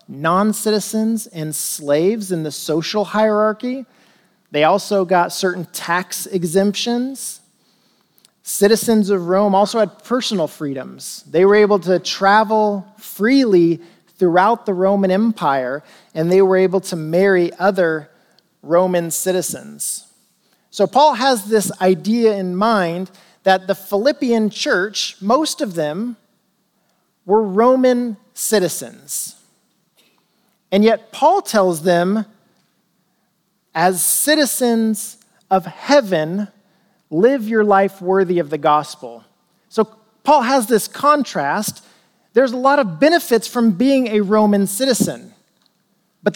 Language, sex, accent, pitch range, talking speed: English, male, American, 185-230 Hz, 115 wpm